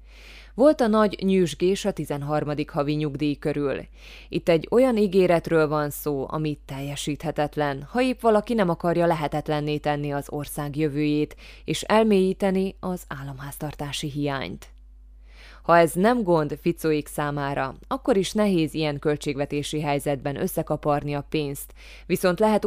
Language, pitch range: Hungarian, 145-175 Hz